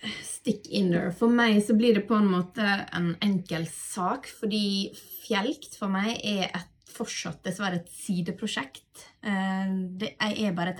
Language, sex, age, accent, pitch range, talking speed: English, female, 20-39, Swedish, 175-220 Hz, 165 wpm